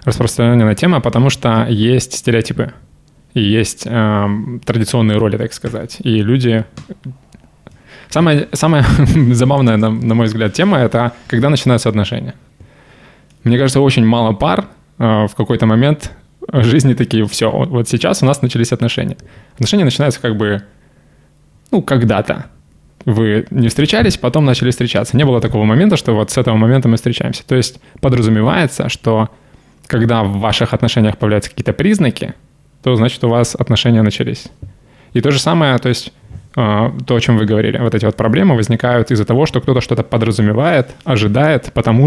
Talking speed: 155 wpm